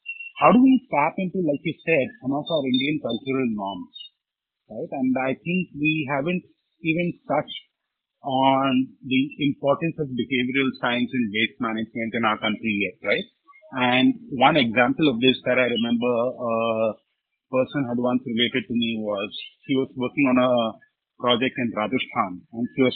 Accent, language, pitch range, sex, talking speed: Indian, English, 120-170 Hz, male, 165 wpm